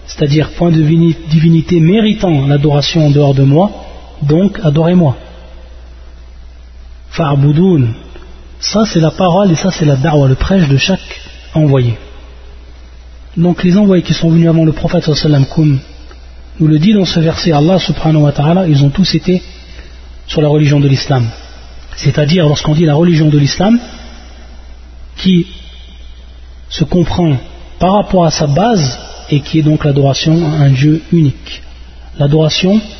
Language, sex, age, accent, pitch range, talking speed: French, male, 30-49, French, 115-170 Hz, 140 wpm